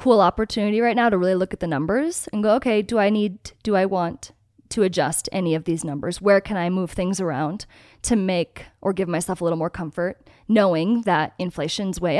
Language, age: English, 20-39